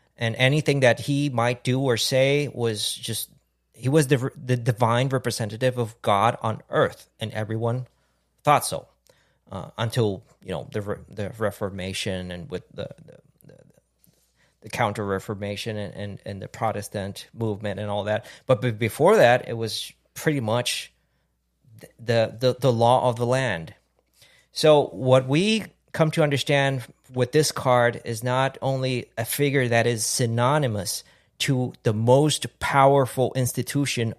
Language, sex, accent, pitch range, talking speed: English, male, American, 110-130 Hz, 145 wpm